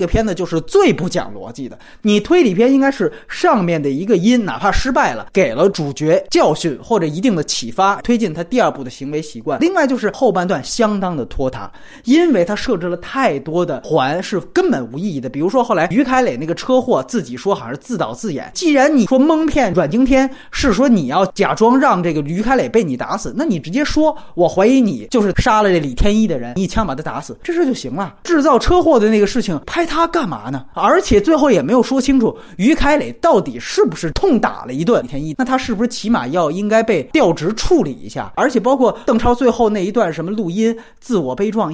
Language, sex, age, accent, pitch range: Chinese, male, 20-39, native, 180-265 Hz